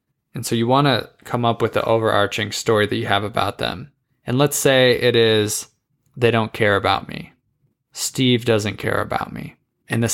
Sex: male